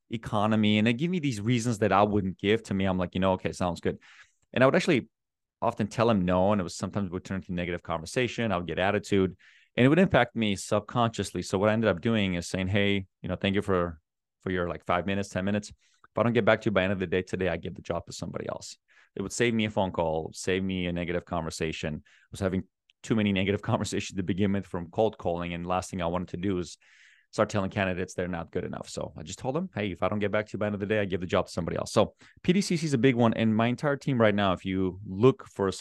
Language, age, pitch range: English, 30-49, 95-115 Hz